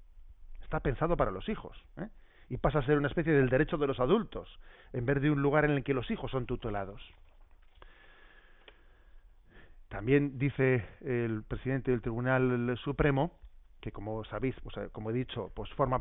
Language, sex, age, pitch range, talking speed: Spanish, male, 40-59, 120-150 Hz, 170 wpm